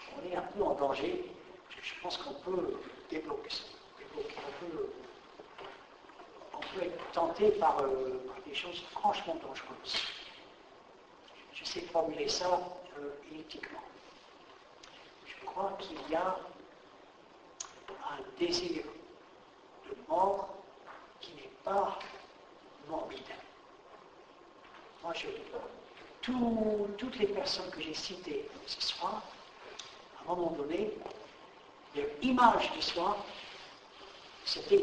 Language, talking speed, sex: French, 105 wpm, male